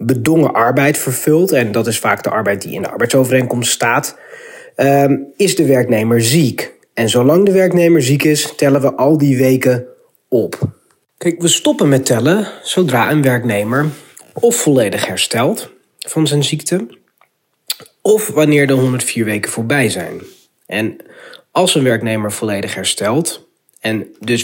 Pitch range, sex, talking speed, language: 125-170 Hz, male, 145 wpm, Dutch